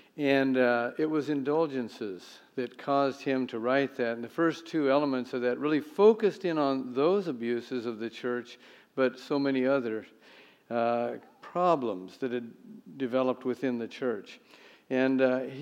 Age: 50-69